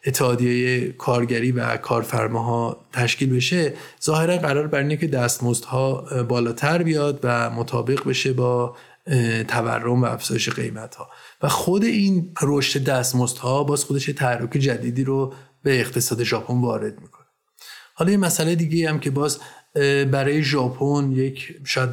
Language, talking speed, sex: Persian, 130 wpm, male